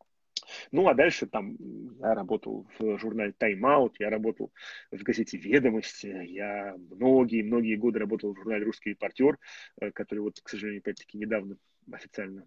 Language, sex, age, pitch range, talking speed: Russian, male, 20-39, 105-120 Hz, 145 wpm